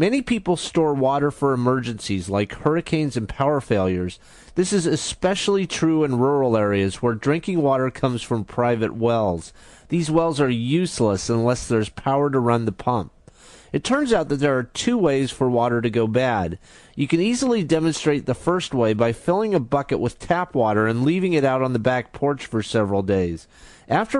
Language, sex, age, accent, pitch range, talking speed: English, male, 30-49, American, 120-160 Hz, 185 wpm